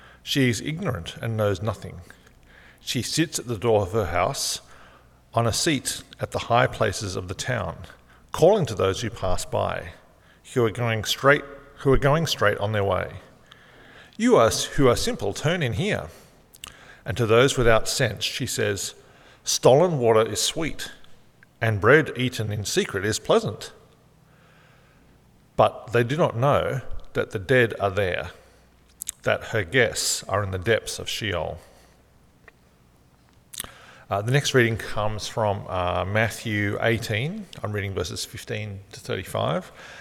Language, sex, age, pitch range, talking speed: English, male, 50-69, 95-120 Hz, 150 wpm